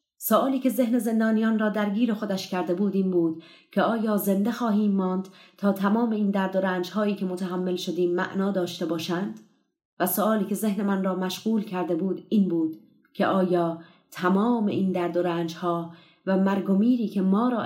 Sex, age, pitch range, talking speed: female, 30-49, 175-205 Hz, 175 wpm